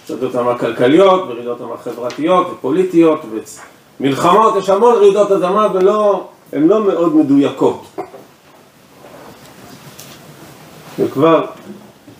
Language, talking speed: Hebrew, 85 wpm